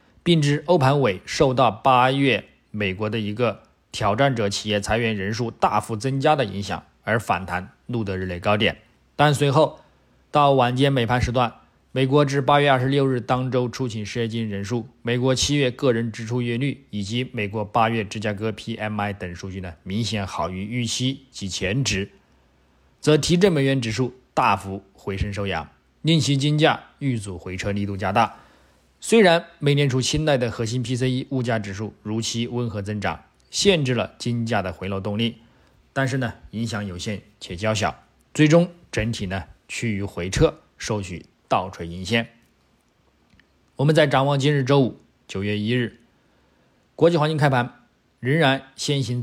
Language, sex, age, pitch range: Chinese, male, 20-39, 100-135 Hz